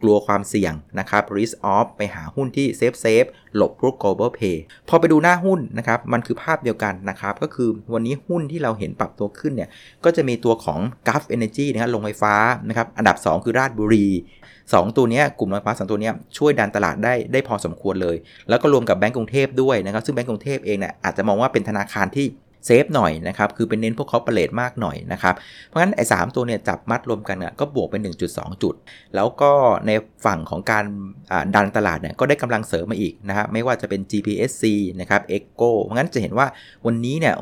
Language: Thai